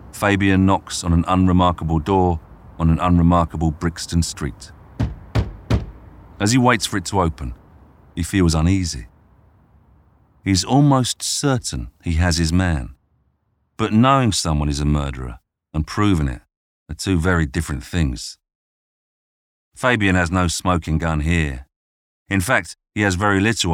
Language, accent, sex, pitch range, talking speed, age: English, British, male, 75-95 Hz, 135 wpm, 40-59